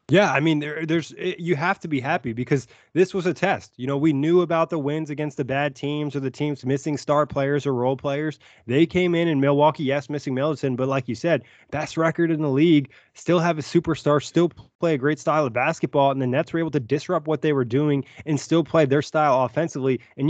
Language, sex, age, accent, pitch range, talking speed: English, male, 20-39, American, 135-160 Hz, 240 wpm